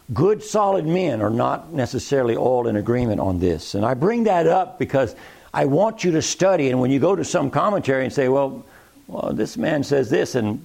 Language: English